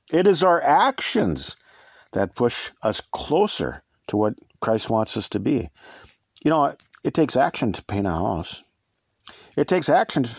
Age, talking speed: 50-69, 160 wpm